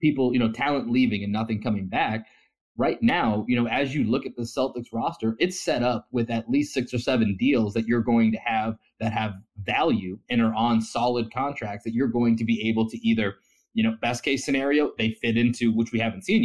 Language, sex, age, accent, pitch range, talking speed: English, male, 30-49, American, 110-130 Hz, 230 wpm